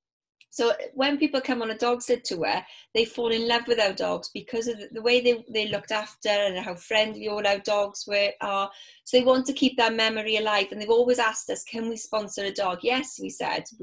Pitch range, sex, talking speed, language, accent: 190-235 Hz, female, 225 wpm, English, British